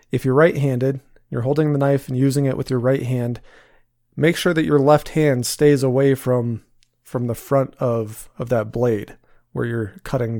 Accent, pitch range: American, 120-140 Hz